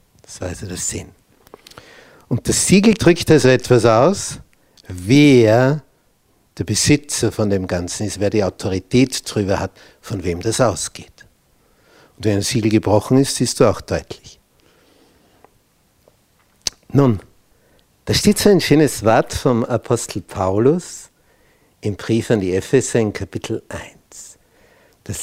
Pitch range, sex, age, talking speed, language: 100-135 Hz, male, 60-79, 135 wpm, German